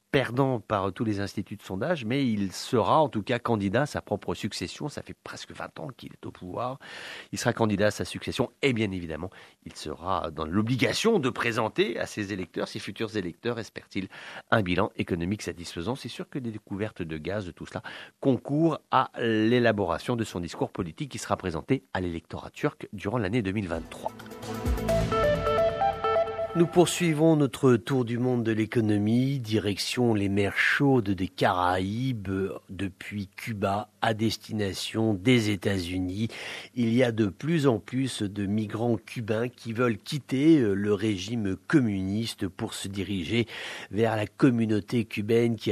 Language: English